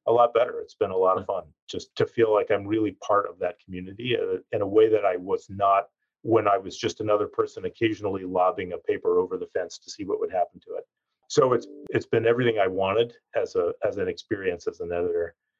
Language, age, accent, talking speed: English, 40-59, American, 235 wpm